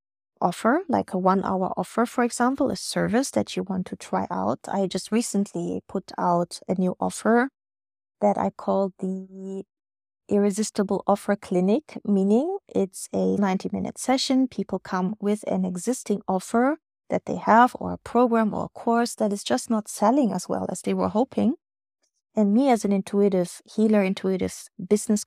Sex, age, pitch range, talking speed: female, 20-39, 185-220 Hz, 170 wpm